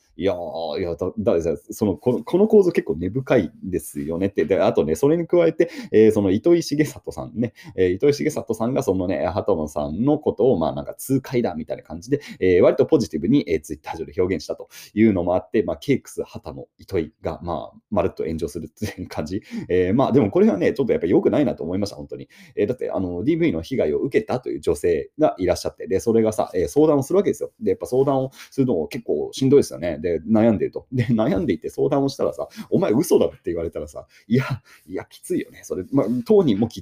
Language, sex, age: Japanese, male, 30-49